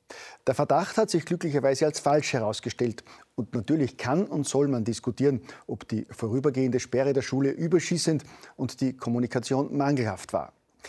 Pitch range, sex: 120-145 Hz, male